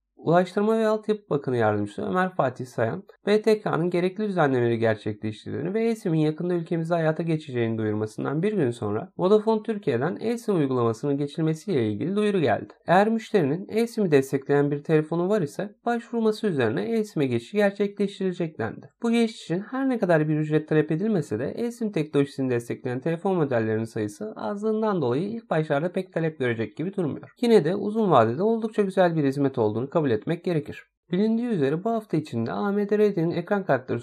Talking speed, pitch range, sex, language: 160 wpm, 145-210 Hz, male, Turkish